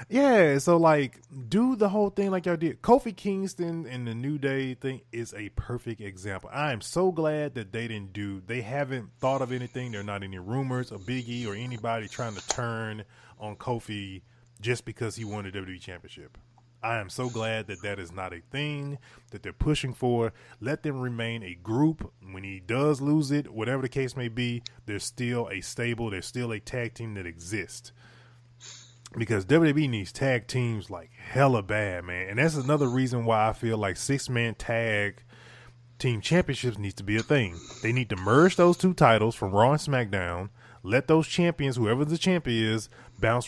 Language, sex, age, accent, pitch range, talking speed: English, male, 20-39, American, 110-135 Hz, 195 wpm